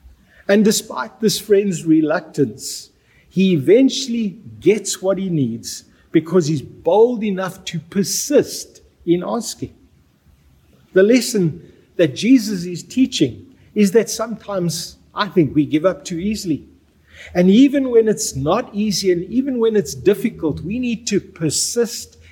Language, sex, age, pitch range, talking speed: English, male, 50-69, 145-200 Hz, 135 wpm